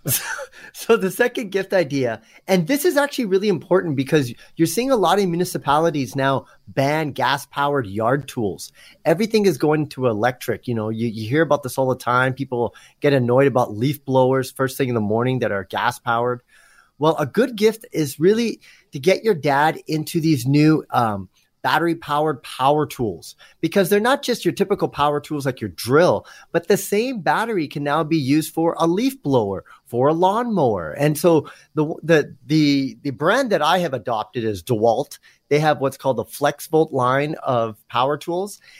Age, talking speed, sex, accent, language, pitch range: 30-49, 185 wpm, male, American, English, 135-185 Hz